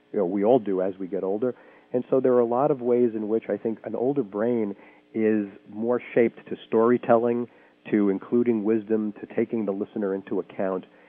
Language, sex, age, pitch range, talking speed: English, male, 40-59, 90-110 Hz, 195 wpm